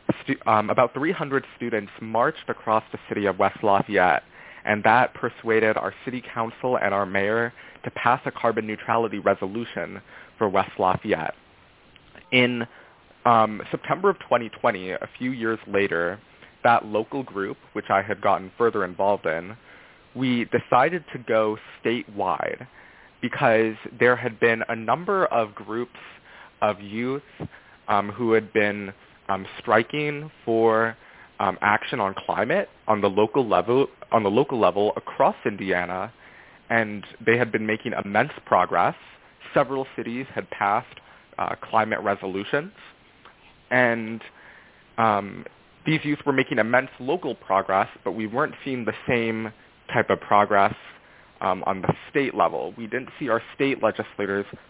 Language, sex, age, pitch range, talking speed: English, male, 20-39, 100-125 Hz, 140 wpm